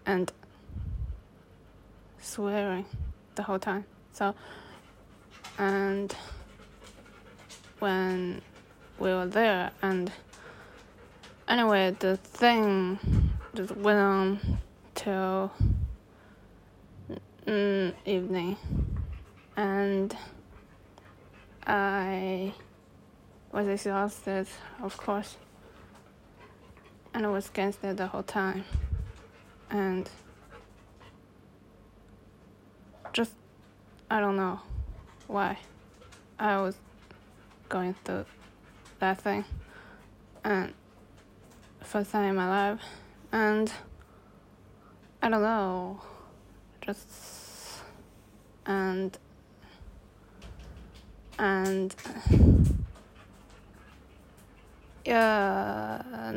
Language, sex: English, female